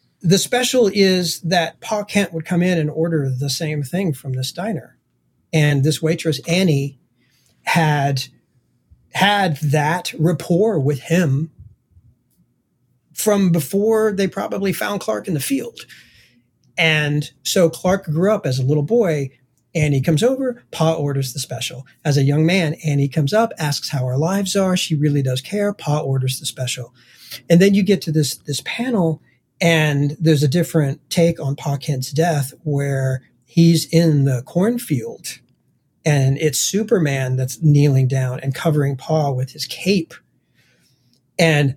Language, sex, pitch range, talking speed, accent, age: English, male, 140-180 Hz, 155 wpm, American, 40-59